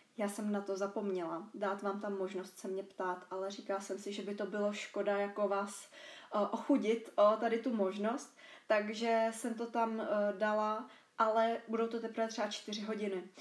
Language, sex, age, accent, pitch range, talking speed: Czech, female, 20-39, native, 200-230 Hz, 180 wpm